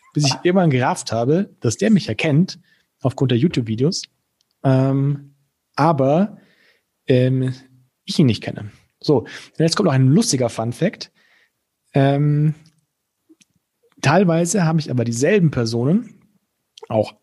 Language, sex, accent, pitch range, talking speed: German, male, German, 120-160 Hz, 120 wpm